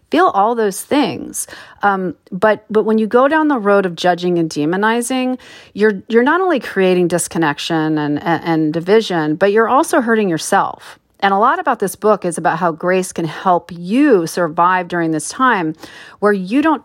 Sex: female